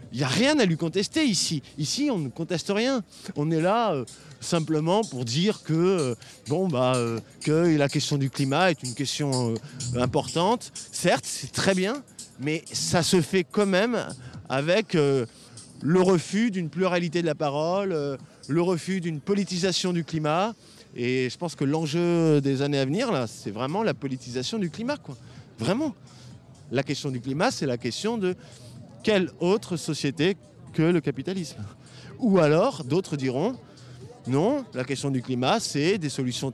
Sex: male